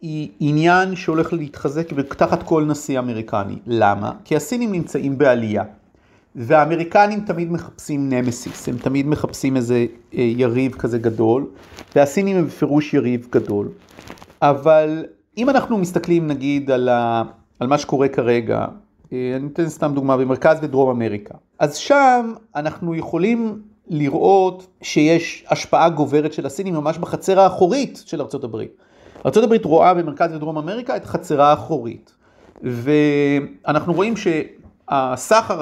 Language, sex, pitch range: Hebrew, male, 135-185 Hz